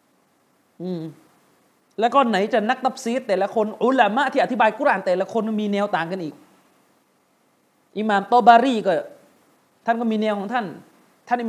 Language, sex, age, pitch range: Thai, male, 30-49, 210-285 Hz